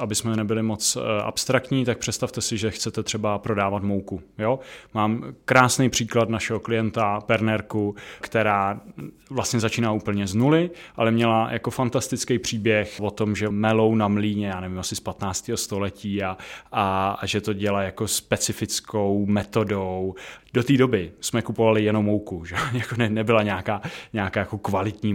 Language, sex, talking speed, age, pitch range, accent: Czech, male, 160 wpm, 20-39, 100-120 Hz, native